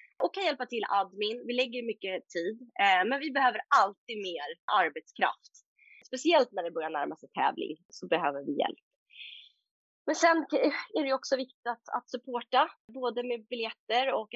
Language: English